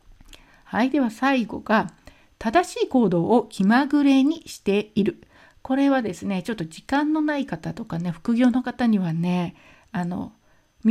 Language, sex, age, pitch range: Japanese, female, 50-69, 200-265 Hz